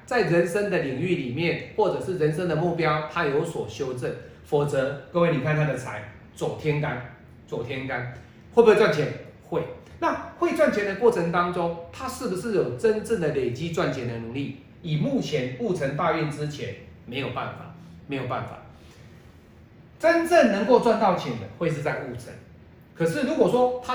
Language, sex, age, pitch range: Chinese, male, 40-59, 130-180 Hz